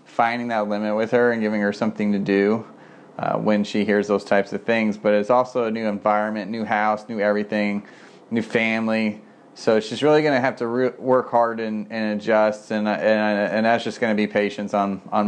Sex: male